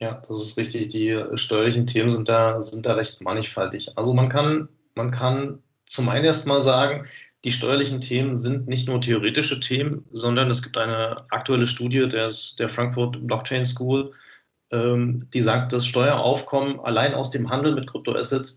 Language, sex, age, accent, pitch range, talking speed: German, male, 30-49, German, 115-135 Hz, 170 wpm